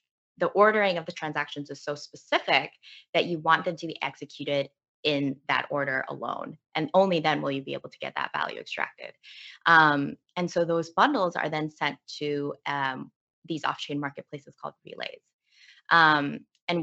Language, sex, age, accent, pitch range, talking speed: English, female, 20-39, American, 145-170 Hz, 170 wpm